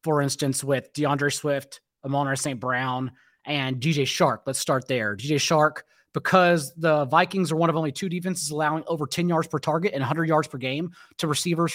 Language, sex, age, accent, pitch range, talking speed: English, male, 30-49, American, 140-170 Hz, 200 wpm